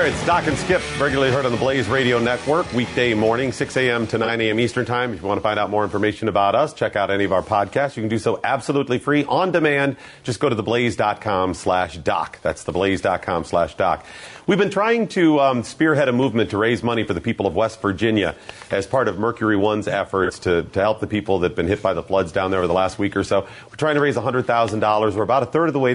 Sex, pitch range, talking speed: male, 100-135 Hz, 250 wpm